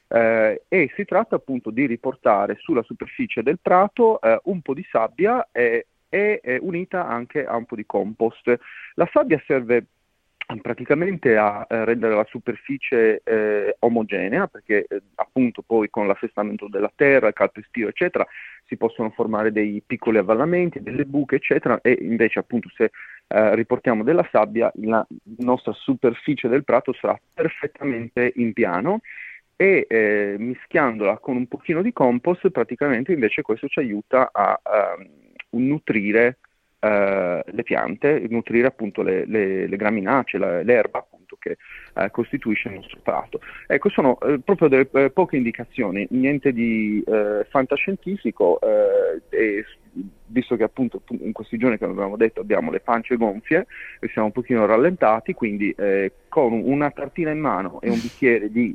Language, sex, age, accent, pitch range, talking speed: Italian, male, 30-49, native, 115-175 Hz, 155 wpm